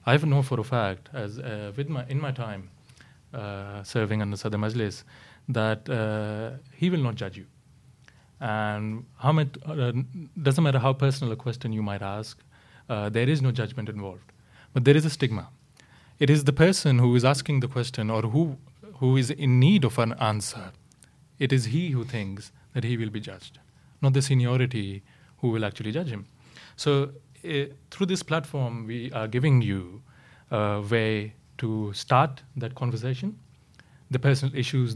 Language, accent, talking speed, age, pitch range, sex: English, Indian, 175 wpm, 30-49, 110-135 Hz, male